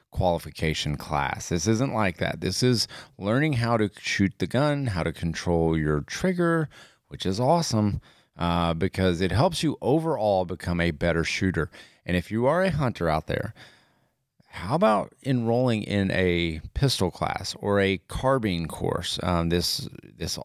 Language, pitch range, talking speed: English, 85-120 Hz, 160 wpm